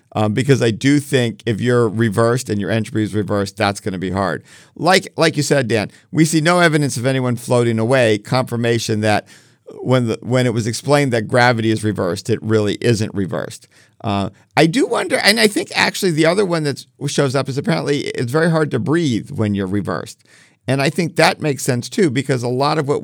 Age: 50-69